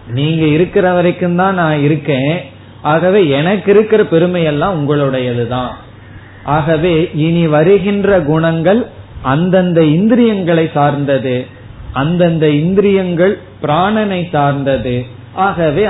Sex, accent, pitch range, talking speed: male, native, 115-160 Hz, 85 wpm